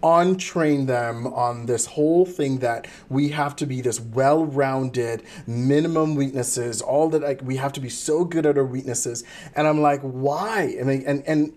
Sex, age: male, 40-59